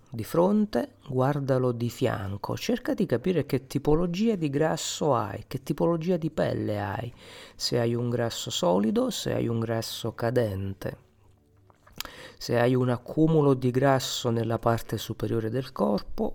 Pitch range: 110-140 Hz